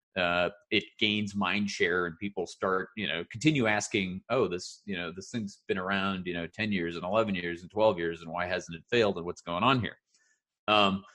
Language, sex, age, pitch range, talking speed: English, male, 30-49, 95-125 Hz, 220 wpm